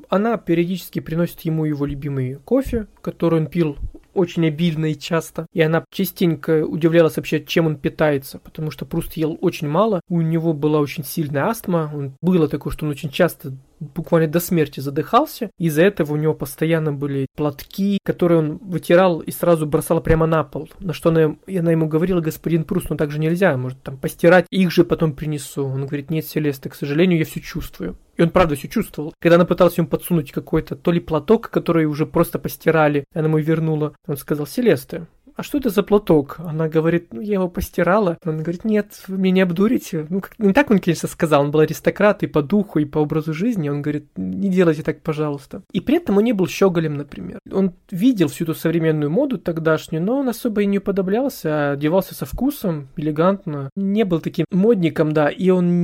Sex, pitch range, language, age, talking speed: male, 155-180 Hz, Russian, 20-39, 200 wpm